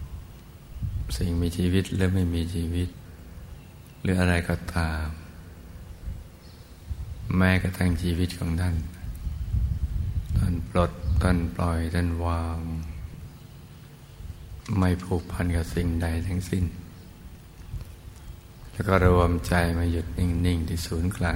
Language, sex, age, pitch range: Thai, male, 60-79, 85-90 Hz